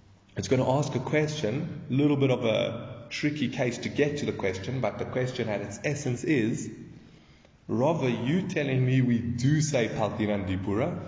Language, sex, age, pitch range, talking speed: English, male, 30-49, 105-150 Hz, 180 wpm